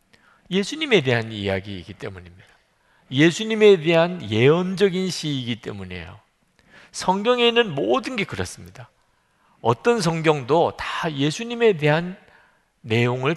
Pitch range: 110-170 Hz